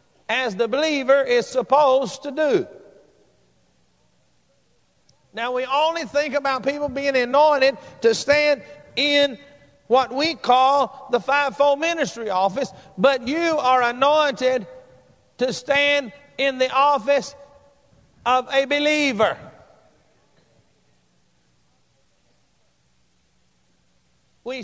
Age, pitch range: 50-69, 240-285 Hz